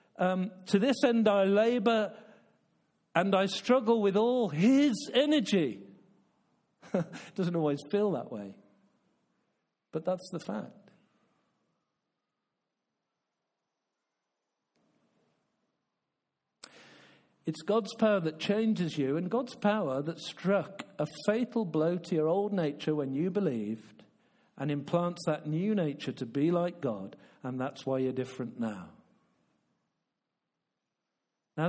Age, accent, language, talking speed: 50-69, British, English, 115 wpm